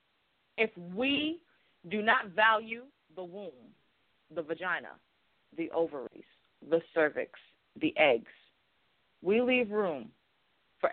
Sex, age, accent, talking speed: female, 30-49, American, 105 wpm